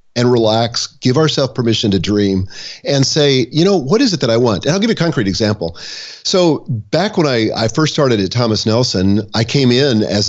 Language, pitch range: English, 105-135 Hz